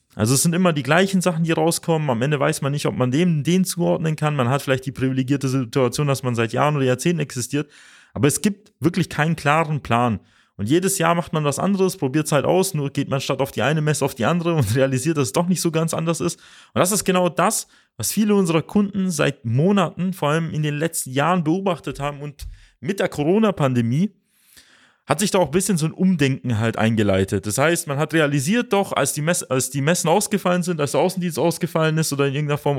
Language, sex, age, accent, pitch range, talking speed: German, male, 30-49, German, 135-180 Hz, 230 wpm